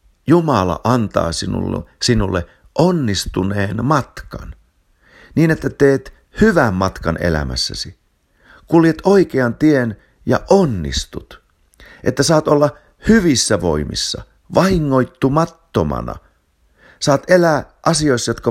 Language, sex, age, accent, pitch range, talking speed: Finnish, male, 50-69, native, 90-140 Hz, 90 wpm